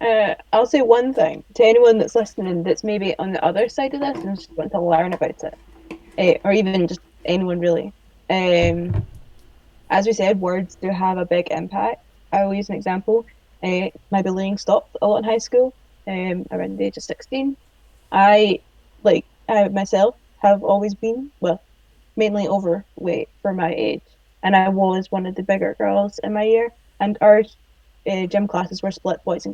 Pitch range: 185-225 Hz